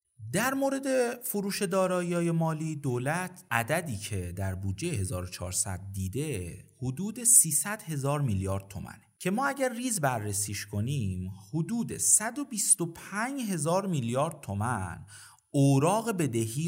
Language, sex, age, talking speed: Persian, male, 30-49, 110 wpm